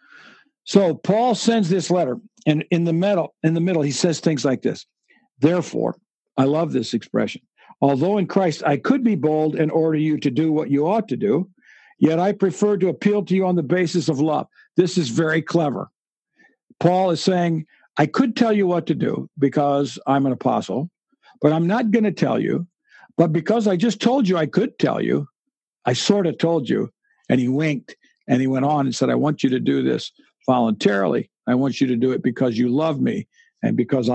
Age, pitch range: 60-79, 150-200 Hz